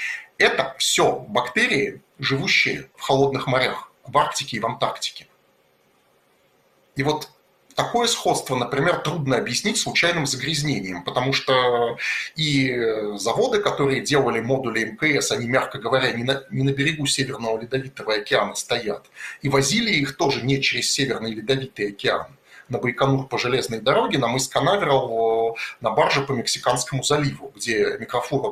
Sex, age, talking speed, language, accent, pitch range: male, 30-49, 135 wpm, Russian, native, 125-150 Hz